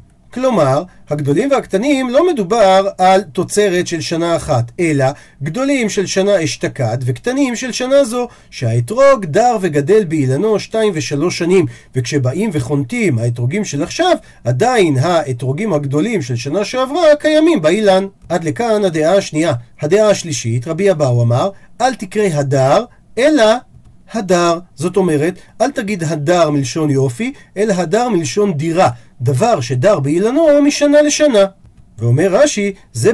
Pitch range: 150-235 Hz